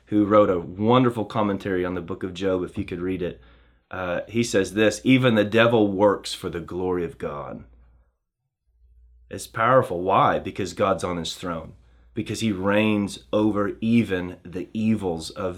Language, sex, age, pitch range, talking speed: English, male, 30-49, 85-115 Hz, 170 wpm